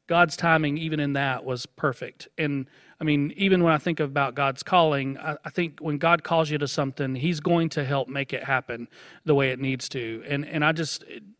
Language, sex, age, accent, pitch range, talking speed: English, male, 40-59, American, 135-155 Hz, 220 wpm